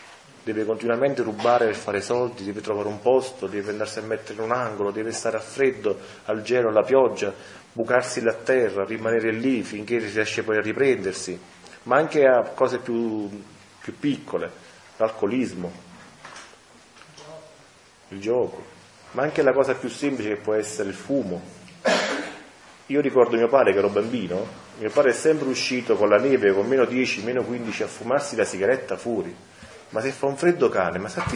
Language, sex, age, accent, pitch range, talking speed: Italian, male, 30-49, native, 110-140 Hz, 170 wpm